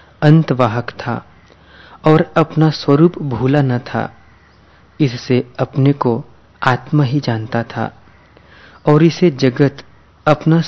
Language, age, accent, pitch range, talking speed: Hindi, 40-59, native, 115-145 Hz, 105 wpm